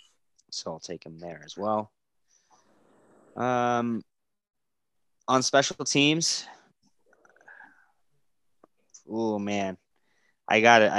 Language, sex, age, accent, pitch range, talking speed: English, male, 20-39, American, 90-115 Hz, 80 wpm